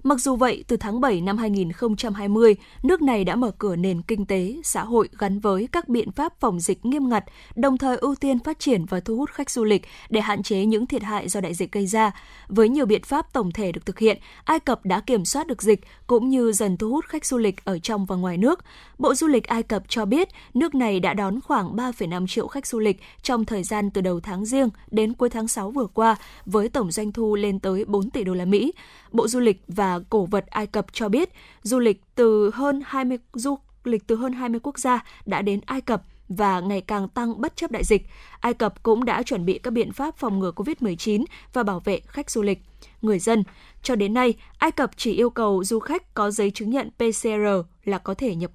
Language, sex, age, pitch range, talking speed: Vietnamese, female, 10-29, 200-255 Hz, 240 wpm